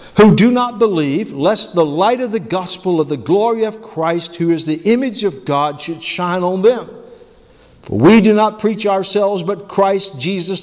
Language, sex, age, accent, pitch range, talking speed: English, male, 50-69, American, 155-205 Hz, 190 wpm